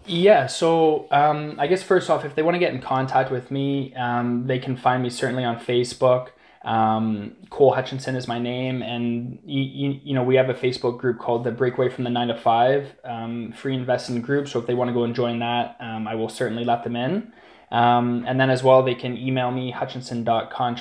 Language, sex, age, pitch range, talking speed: English, male, 20-39, 120-135 Hz, 225 wpm